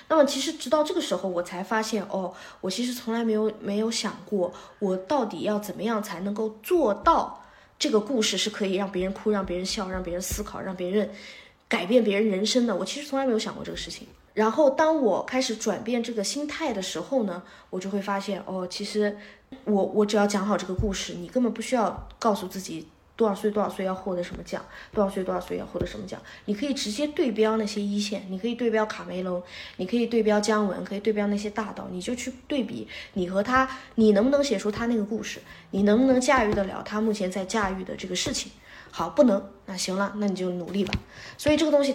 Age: 20-39